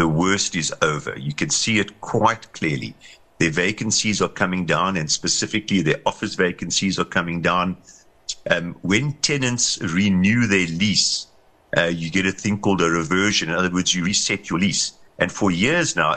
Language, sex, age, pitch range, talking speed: English, male, 50-69, 90-125 Hz, 180 wpm